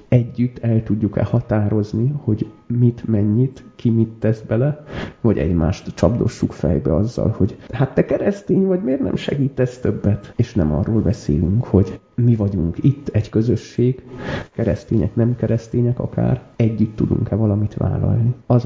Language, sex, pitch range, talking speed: Hungarian, male, 100-120 Hz, 140 wpm